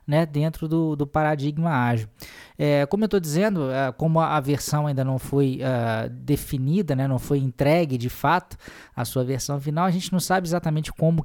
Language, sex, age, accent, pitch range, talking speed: Portuguese, male, 20-39, Brazilian, 125-160 Hz, 175 wpm